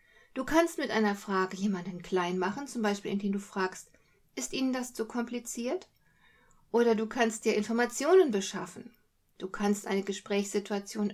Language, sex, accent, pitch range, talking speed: German, female, German, 195-245 Hz, 150 wpm